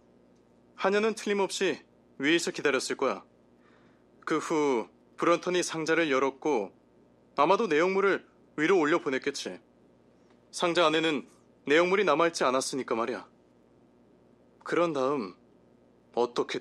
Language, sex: Korean, male